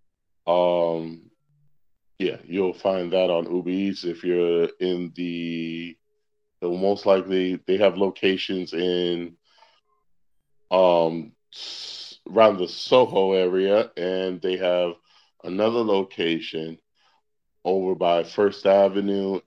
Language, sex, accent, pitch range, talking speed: English, male, American, 85-115 Hz, 100 wpm